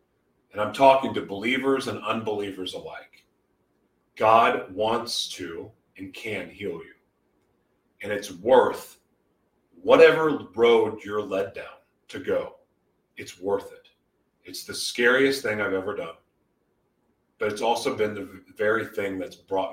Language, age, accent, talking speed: English, 40-59, American, 135 wpm